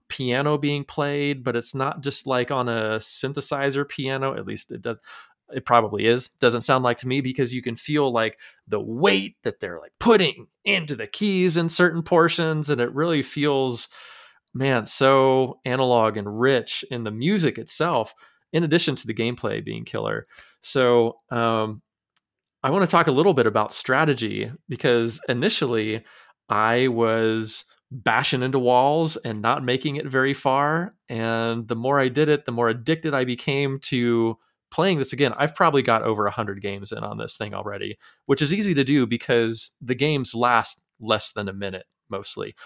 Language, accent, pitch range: English, American, 115-145 Hz